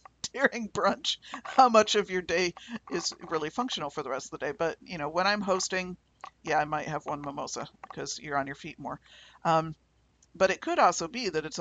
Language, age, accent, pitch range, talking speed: English, 50-69, American, 165-210 Hz, 215 wpm